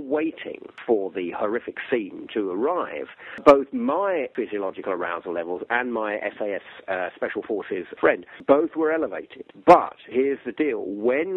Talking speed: 145 wpm